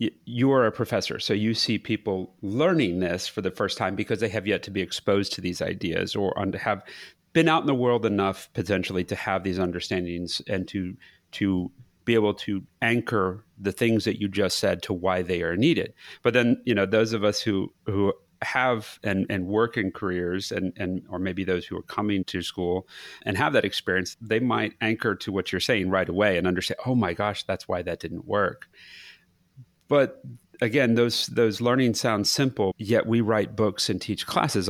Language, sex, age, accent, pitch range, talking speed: English, male, 40-59, American, 95-115 Hz, 200 wpm